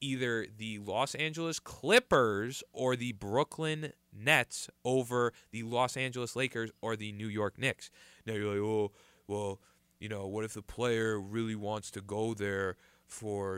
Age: 20-39